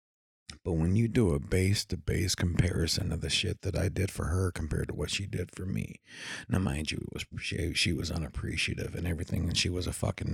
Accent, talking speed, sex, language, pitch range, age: American, 205 wpm, male, English, 85-105 Hz, 40-59